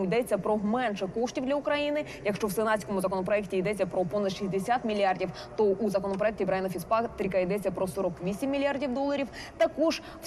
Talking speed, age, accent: 160 wpm, 20-39, native